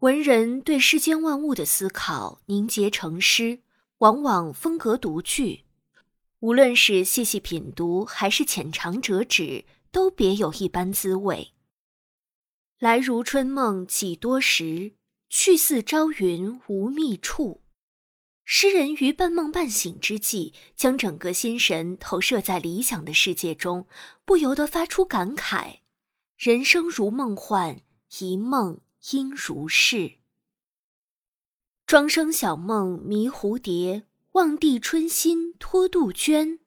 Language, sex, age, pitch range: Chinese, female, 20-39, 190-300 Hz